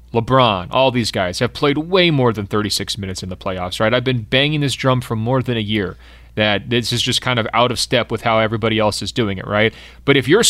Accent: American